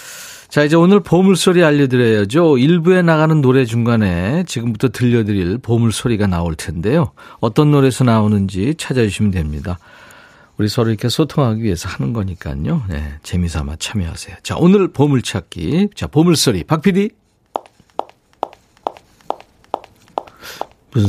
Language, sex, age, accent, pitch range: Korean, male, 50-69, native, 95-150 Hz